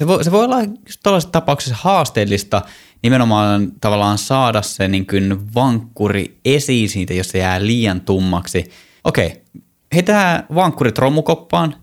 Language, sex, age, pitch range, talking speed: Finnish, male, 20-39, 95-130 Hz, 130 wpm